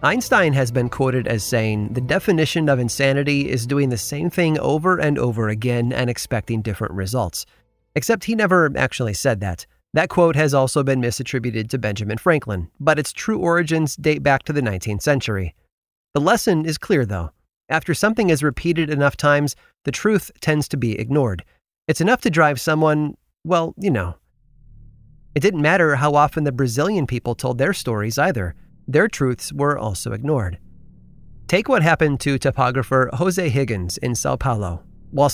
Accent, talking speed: American, 170 wpm